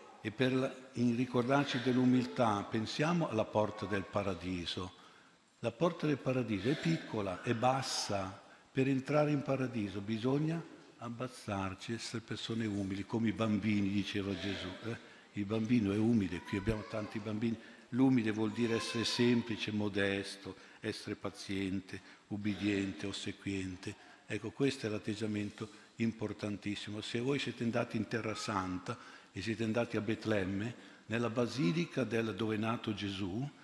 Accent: native